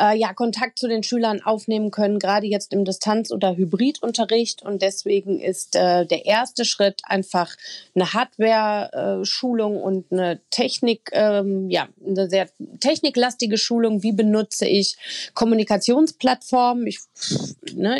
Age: 30-49